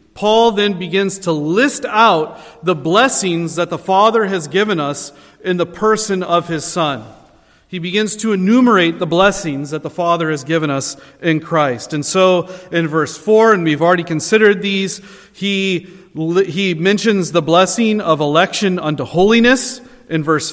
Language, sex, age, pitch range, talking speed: English, male, 40-59, 160-205 Hz, 160 wpm